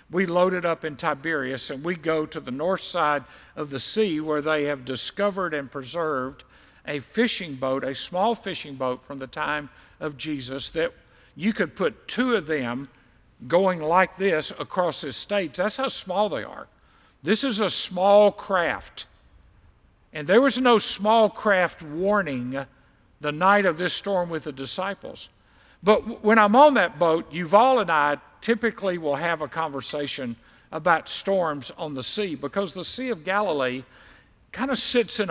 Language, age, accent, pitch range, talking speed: English, 50-69, American, 145-205 Hz, 170 wpm